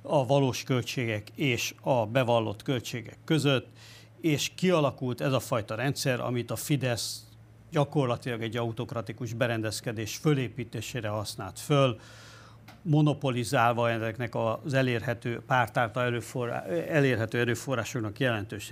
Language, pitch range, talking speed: Hungarian, 115-135 Hz, 105 wpm